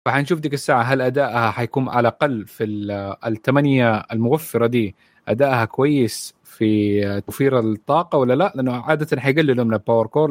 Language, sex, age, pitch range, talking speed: Arabic, male, 30-49, 115-140 Hz, 150 wpm